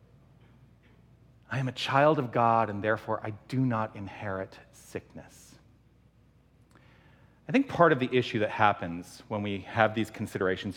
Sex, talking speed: male, 145 wpm